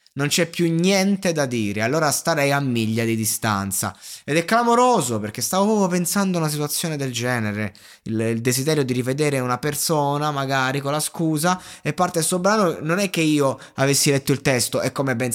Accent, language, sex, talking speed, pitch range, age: native, Italian, male, 200 wpm, 120-175 Hz, 20-39